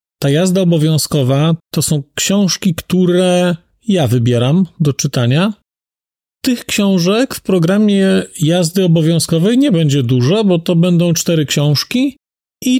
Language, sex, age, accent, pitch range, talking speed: Polish, male, 40-59, native, 145-195 Hz, 115 wpm